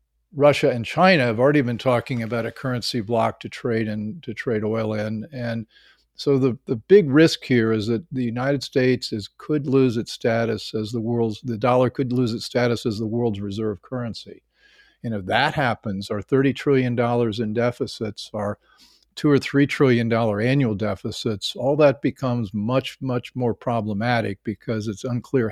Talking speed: 180 wpm